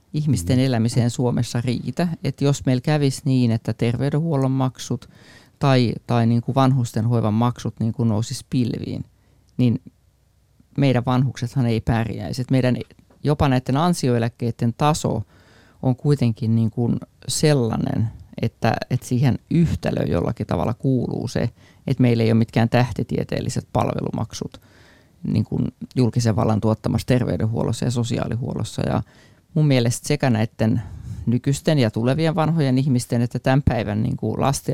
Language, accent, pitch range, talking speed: Finnish, native, 115-130 Hz, 135 wpm